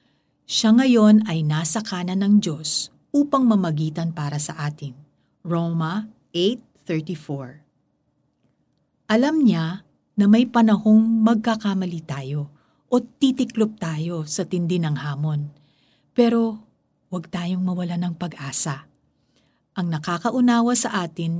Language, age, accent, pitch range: Filipino, 50-69, native, 155-220 Hz